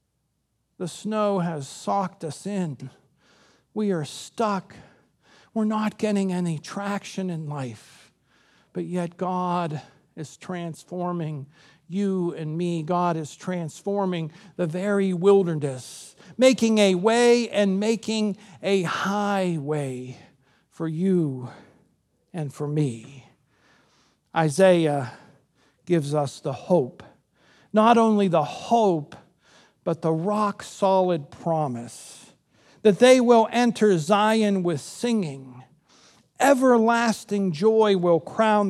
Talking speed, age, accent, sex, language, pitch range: 100 wpm, 50-69, American, male, English, 145-210 Hz